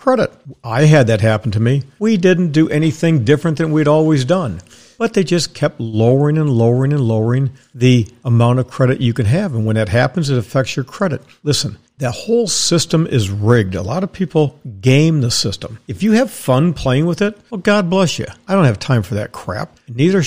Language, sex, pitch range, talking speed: English, male, 125-170 Hz, 215 wpm